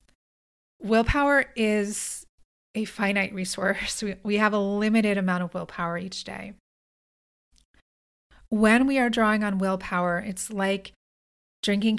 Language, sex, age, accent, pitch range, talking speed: English, female, 30-49, American, 175-205 Hz, 120 wpm